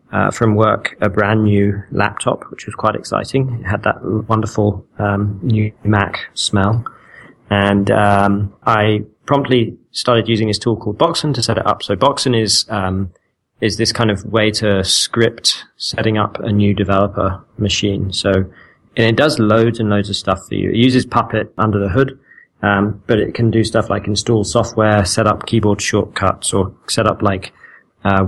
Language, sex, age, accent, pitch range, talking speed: English, male, 20-39, British, 100-115 Hz, 180 wpm